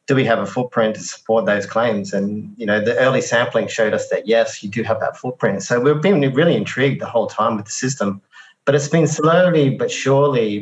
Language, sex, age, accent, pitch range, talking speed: English, male, 30-49, Australian, 105-135 Hz, 230 wpm